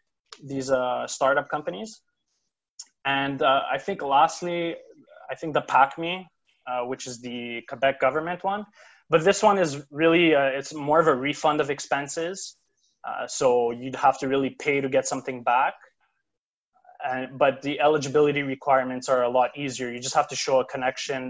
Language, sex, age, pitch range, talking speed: English, male, 20-39, 130-150 Hz, 170 wpm